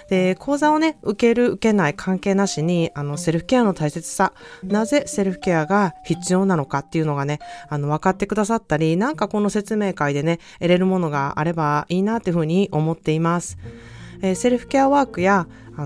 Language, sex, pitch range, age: Japanese, female, 150-190 Hz, 20-39